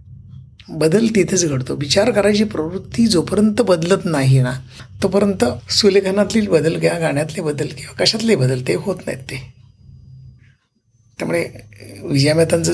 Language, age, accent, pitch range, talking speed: Marathi, 60-79, native, 125-205 Hz, 125 wpm